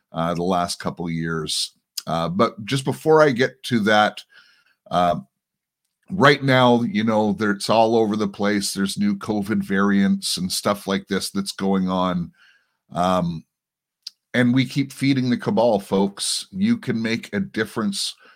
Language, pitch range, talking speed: English, 100-135 Hz, 160 wpm